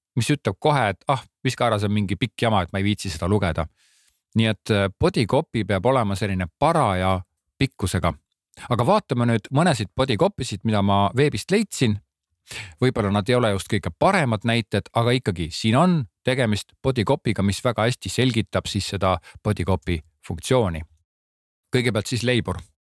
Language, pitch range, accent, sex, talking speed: Czech, 95-125 Hz, Finnish, male, 155 wpm